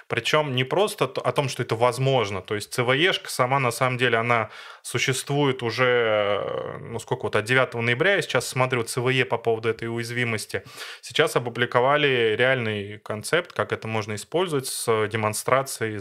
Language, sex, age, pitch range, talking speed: Russian, male, 20-39, 105-130 Hz, 155 wpm